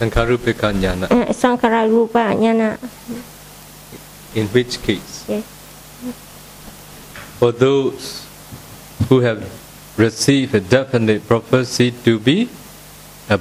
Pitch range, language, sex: 115-150 Hz, Vietnamese, male